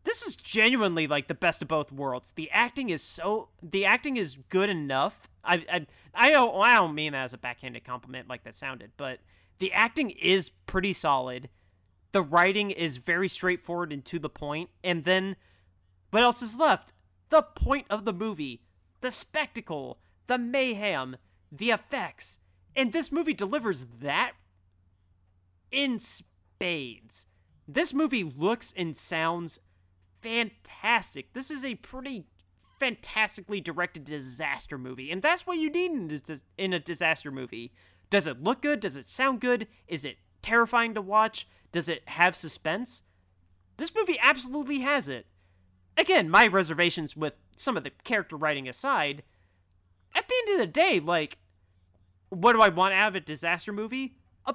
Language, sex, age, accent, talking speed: English, male, 30-49, American, 160 wpm